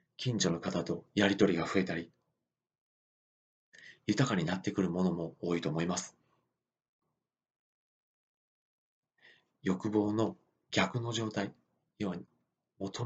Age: 40-59